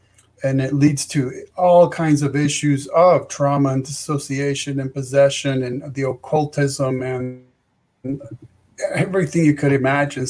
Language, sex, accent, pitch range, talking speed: English, male, American, 130-150 Hz, 130 wpm